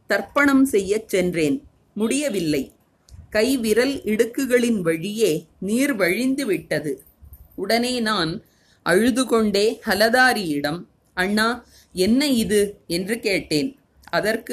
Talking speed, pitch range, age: 75 wpm, 180-240 Hz, 30-49